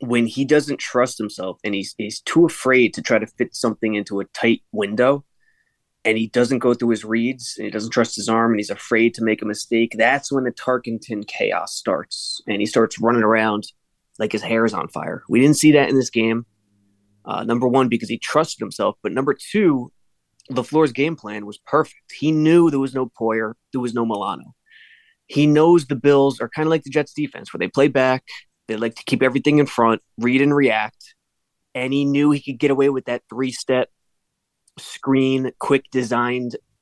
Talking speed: 205 wpm